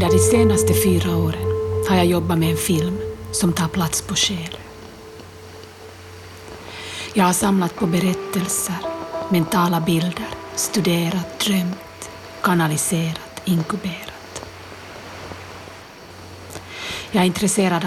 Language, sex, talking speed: Swedish, female, 100 wpm